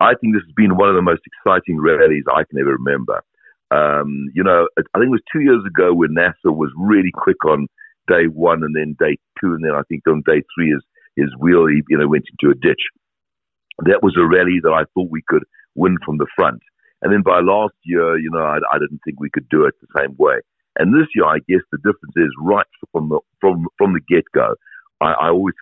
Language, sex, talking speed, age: English, male, 240 wpm, 60-79